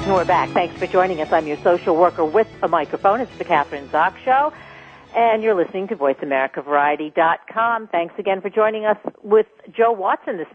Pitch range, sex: 170-225 Hz, female